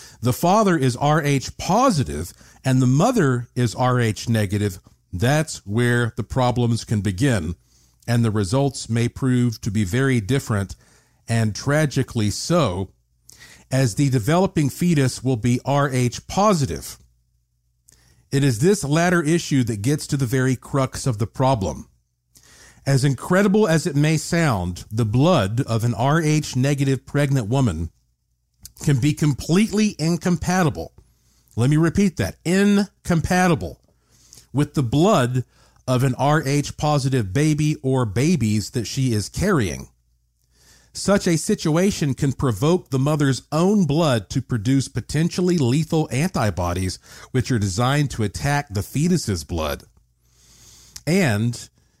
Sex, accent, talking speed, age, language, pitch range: male, American, 125 wpm, 50-69, English, 110-150 Hz